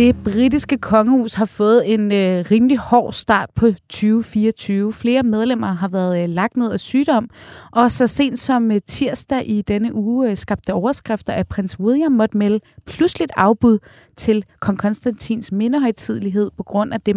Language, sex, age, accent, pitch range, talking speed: Danish, female, 30-49, native, 200-240 Hz, 155 wpm